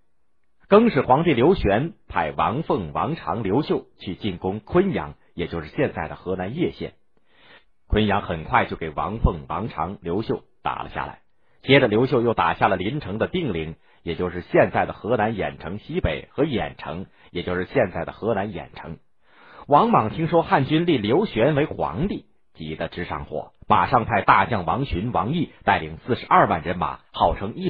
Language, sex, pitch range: Chinese, male, 85-140 Hz